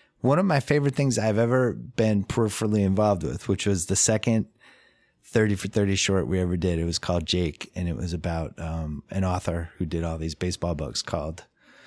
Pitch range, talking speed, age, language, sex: 85-105 Hz, 200 wpm, 30-49, English, male